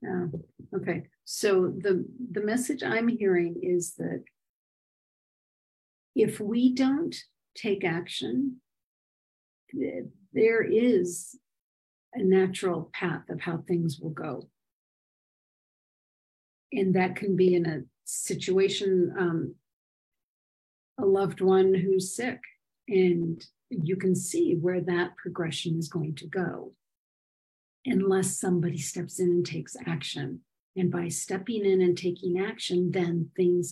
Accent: American